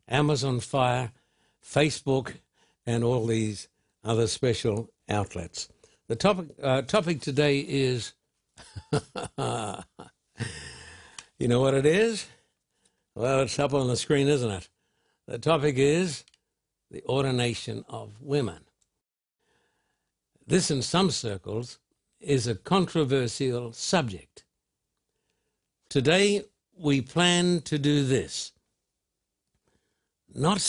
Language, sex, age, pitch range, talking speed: English, male, 60-79, 115-150 Hz, 100 wpm